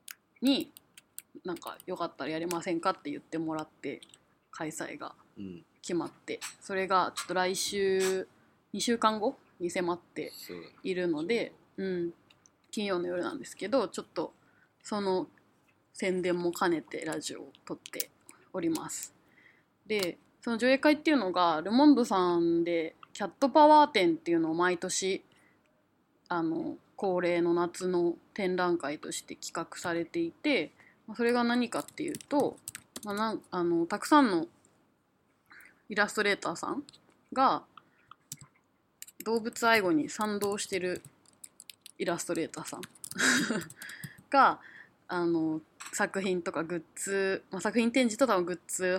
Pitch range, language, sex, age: 175-240 Hz, Japanese, female, 20-39